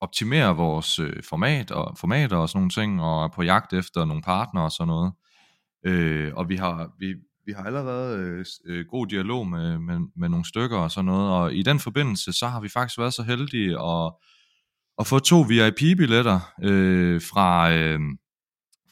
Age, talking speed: 30-49, 180 wpm